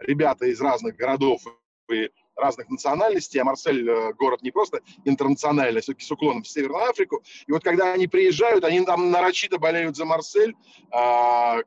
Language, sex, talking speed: Russian, male, 160 wpm